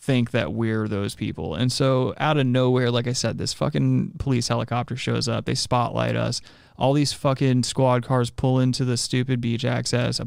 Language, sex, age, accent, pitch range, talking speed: English, male, 20-39, American, 110-125 Hz, 200 wpm